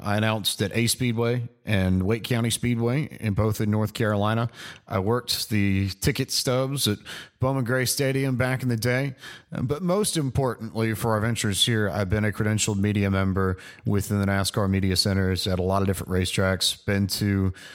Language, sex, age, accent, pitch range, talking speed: English, male, 30-49, American, 100-125 Hz, 180 wpm